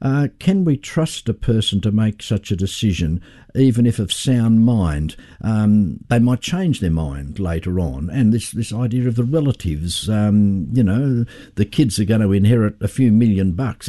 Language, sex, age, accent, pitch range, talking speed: English, male, 60-79, Australian, 100-140 Hz, 190 wpm